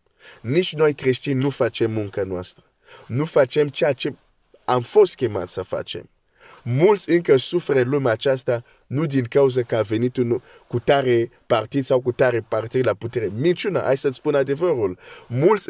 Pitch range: 115-150 Hz